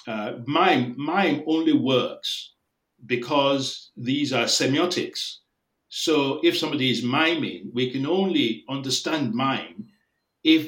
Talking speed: 110 wpm